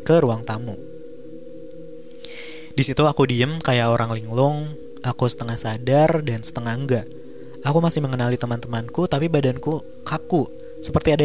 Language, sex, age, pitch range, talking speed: Indonesian, male, 20-39, 120-150 Hz, 135 wpm